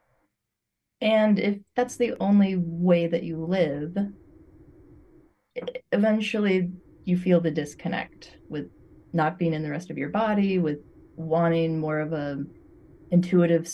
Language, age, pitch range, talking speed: English, 20-39, 155-180 Hz, 125 wpm